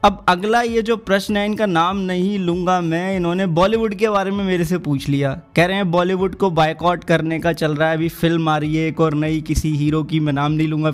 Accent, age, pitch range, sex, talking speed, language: native, 20-39, 160-195 Hz, male, 250 wpm, Hindi